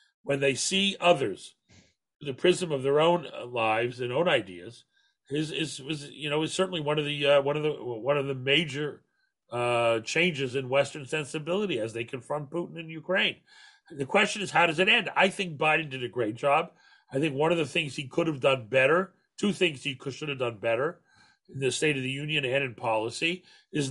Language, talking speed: English, 210 wpm